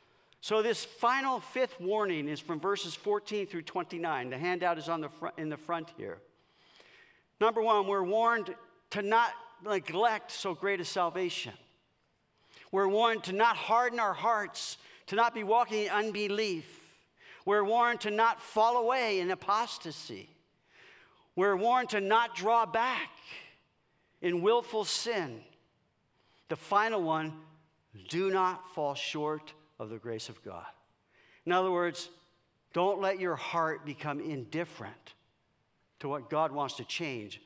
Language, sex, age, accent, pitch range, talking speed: English, male, 50-69, American, 155-215 Hz, 145 wpm